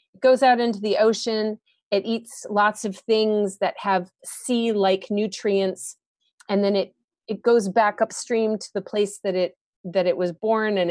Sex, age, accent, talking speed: female, 30-49, American, 175 wpm